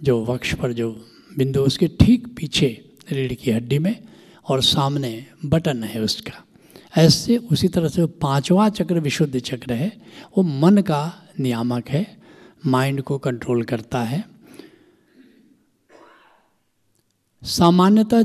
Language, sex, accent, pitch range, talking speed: Hindi, male, native, 135-180 Hz, 120 wpm